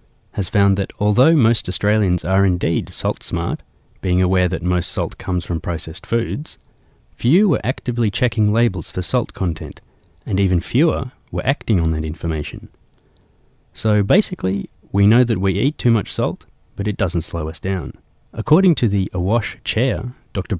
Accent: Australian